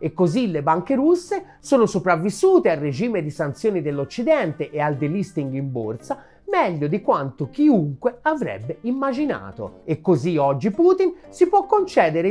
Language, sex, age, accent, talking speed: Italian, male, 30-49, native, 145 wpm